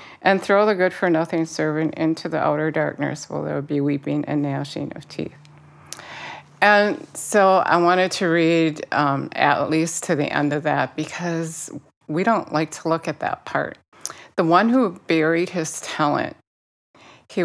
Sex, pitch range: female, 150-185 Hz